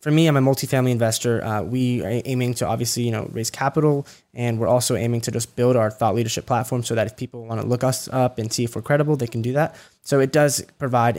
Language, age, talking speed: English, 10-29, 265 wpm